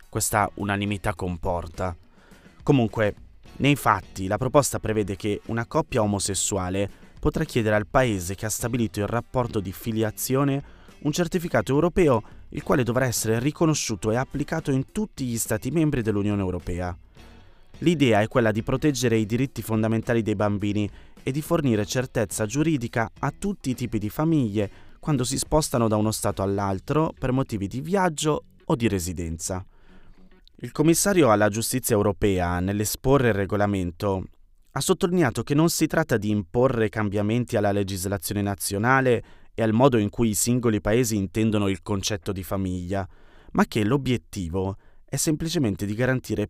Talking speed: 150 wpm